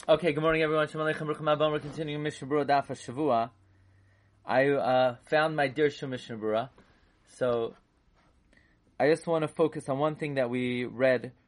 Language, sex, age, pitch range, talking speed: English, male, 30-49, 115-155 Hz, 165 wpm